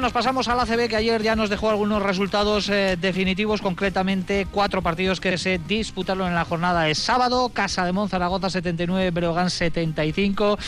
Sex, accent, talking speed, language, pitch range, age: male, Spanish, 170 wpm, Spanish, 165-205 Hz, 30-49